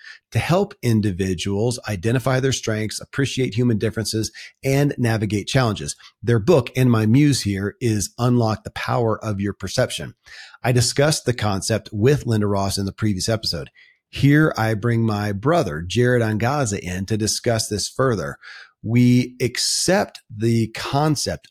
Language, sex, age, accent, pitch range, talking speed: English, male, 40-59, American, 105-125 Hz, 145 wpm